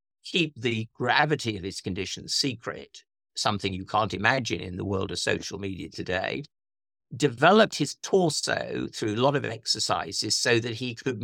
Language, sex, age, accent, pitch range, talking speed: English, male, 50-69, British, 105-145 Hz, 155 wpm